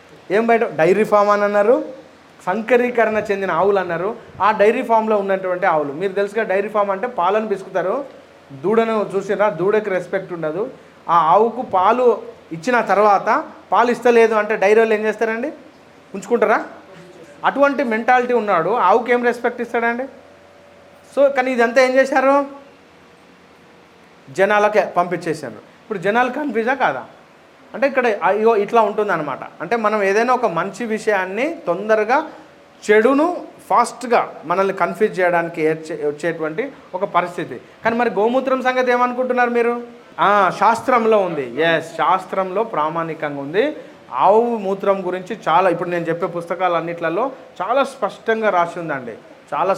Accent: Indian